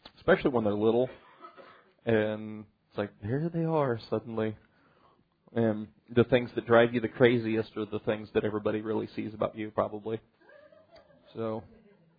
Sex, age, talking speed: male, 30-49, 150 wpm